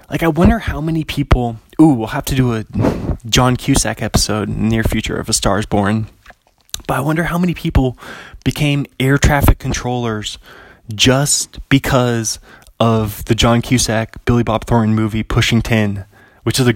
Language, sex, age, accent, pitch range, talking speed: English, male, 20-39, American, 110-135 Hz, 170 wpm